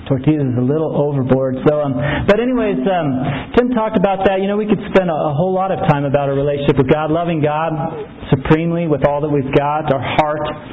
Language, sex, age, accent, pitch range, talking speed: English, male, 30-49, American, 145-190 Hz, 225 wpm